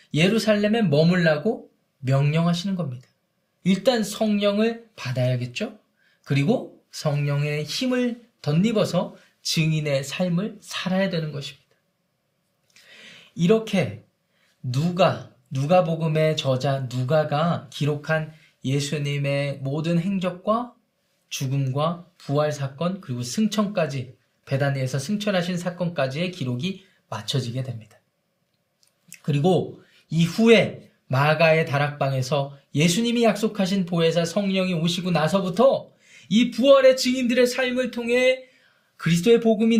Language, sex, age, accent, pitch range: Korean, male, 20-39, native, 140-195 Hz